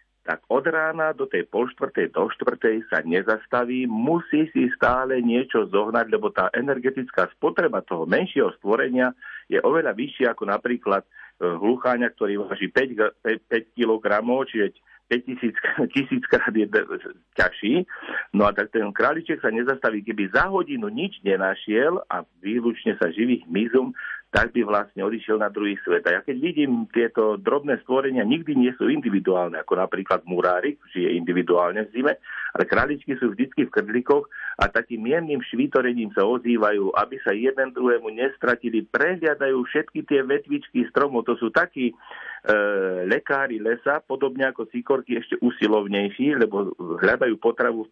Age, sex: 50-69, male